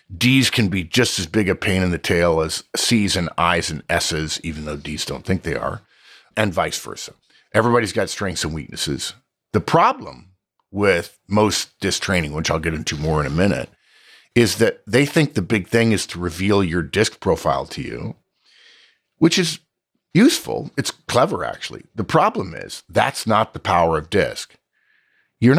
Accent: American